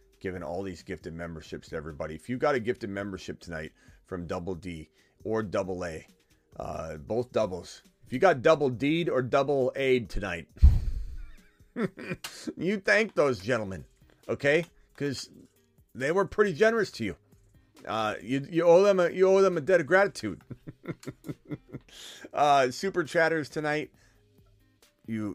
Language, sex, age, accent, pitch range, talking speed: English, male, 30-49, American, 90-120 Hz, 145 wpm